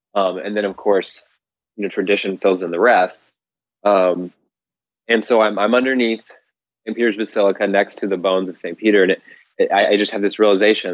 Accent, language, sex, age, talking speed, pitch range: American, English, male, 20-39, 195 wpm, 95-110 Hz